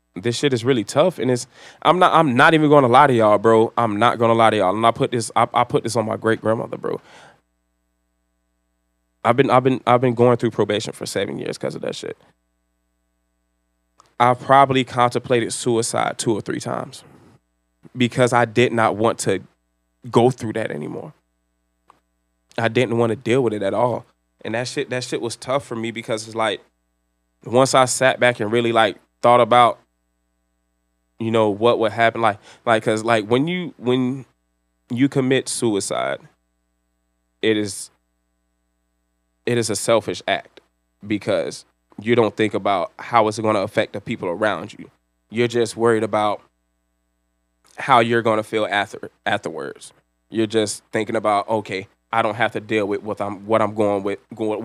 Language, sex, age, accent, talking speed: English, male, 20-39, American, 180 wpm